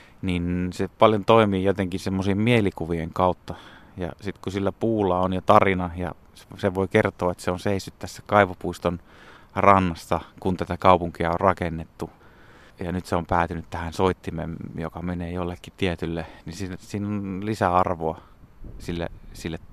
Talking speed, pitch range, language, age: 150 wpm, 85-100 Hz, Finnish, 30-49